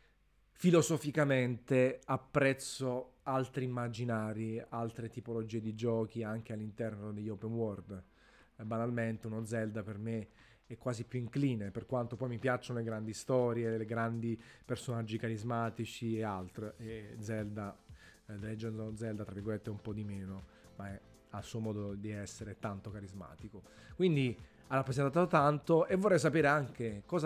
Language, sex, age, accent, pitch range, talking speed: Italian, male, 30-49, native, 110-135 Hz, 150 wpm